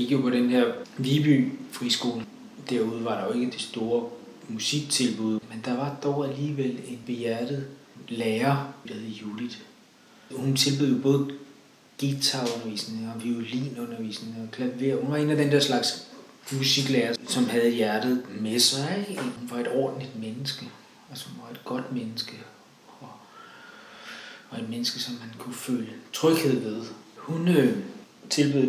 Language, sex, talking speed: English, male, 140 wpm